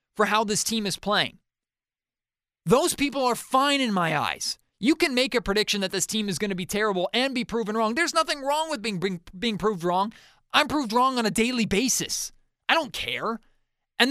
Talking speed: 215 wpm